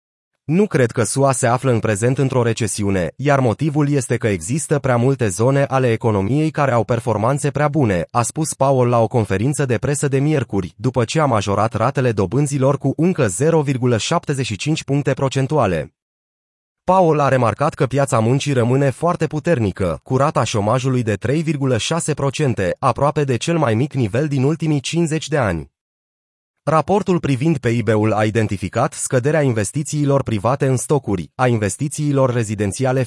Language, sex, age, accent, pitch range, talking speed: Romanian, male, 30-49, native, 120-150 Hz, 150 wpm